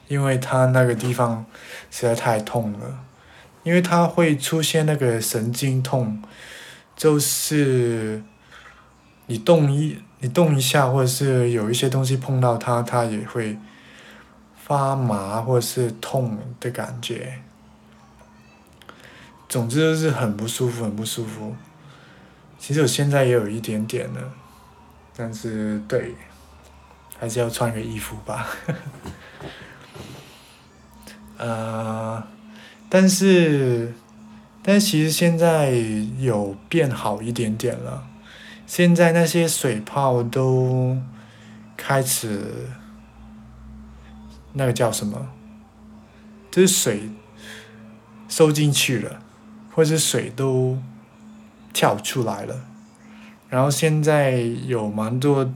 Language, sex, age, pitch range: Chinese, male, 20-39, 110-145 Hz